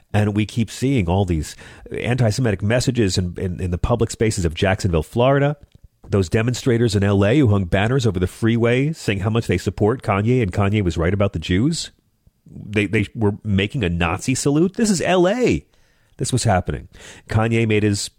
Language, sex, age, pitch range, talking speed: English, male, 40-59, 95-115 Hz, 190 wpm